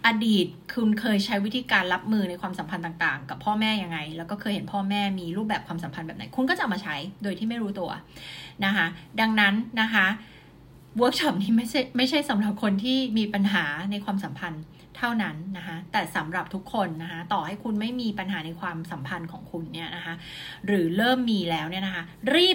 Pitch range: 175-220 Hz